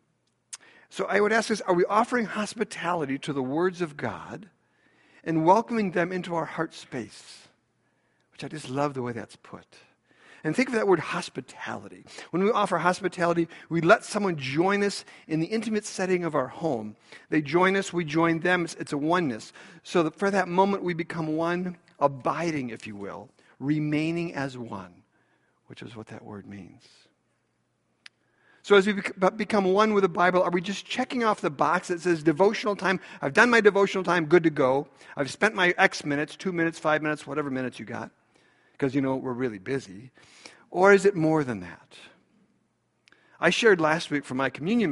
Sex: male